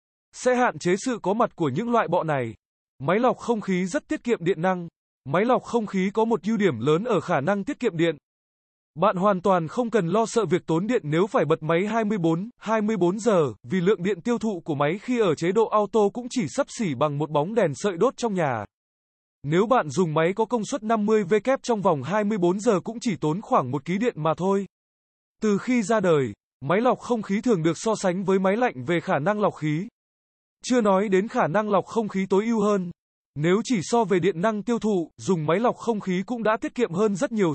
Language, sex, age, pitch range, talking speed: Vietnamese, male, 20-39, 170-225 Hz, 235 wpm